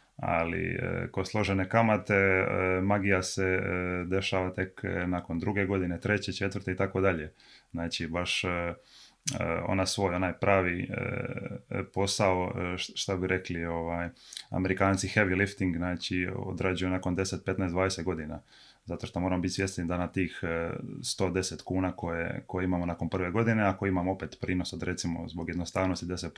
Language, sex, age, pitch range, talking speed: Croatian, male, 20-39, 90-100 Hz, 150 wpm